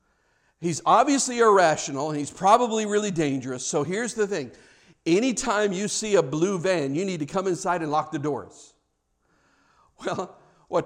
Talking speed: 160 wpm